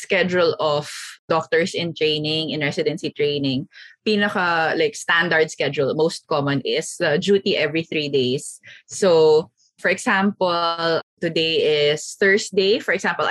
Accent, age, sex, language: Filipino, 20-39, female, English